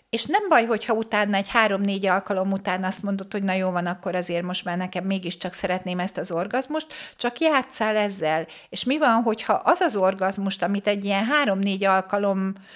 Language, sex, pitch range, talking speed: Hungarian, female, 190-225 Hz, 190 wpm